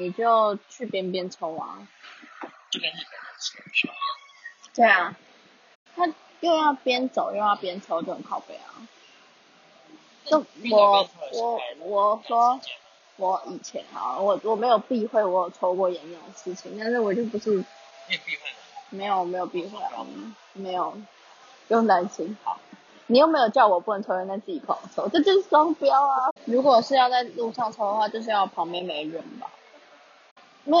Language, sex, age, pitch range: Chinese, female, 20-39, 190-265 Hz